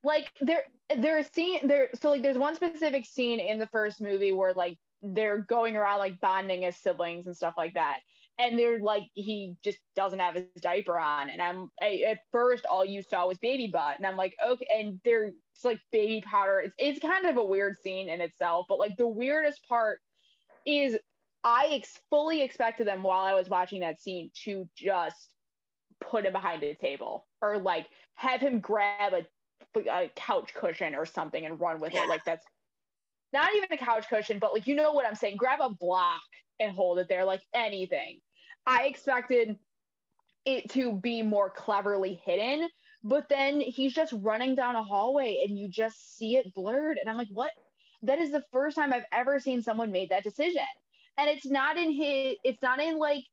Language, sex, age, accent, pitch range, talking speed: English, female, 20-39, American, 195-275 Hz, 200 wpm